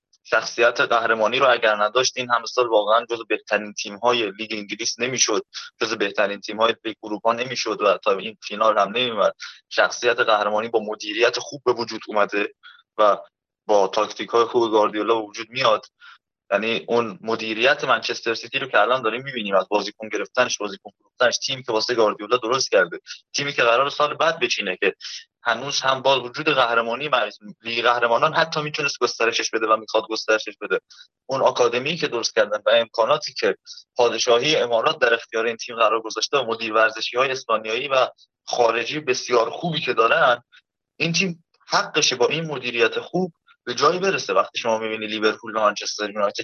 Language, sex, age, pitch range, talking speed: Persian, male, 20-39, 110-155 Hz, 165 wpm